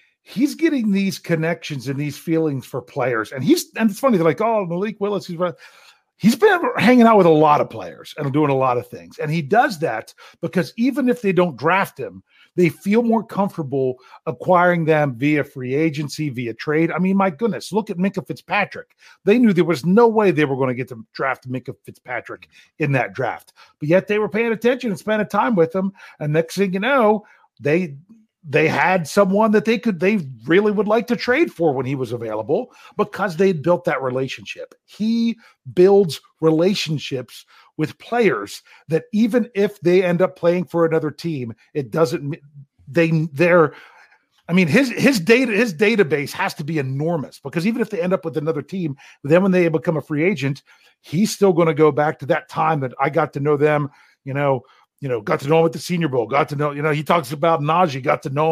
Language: English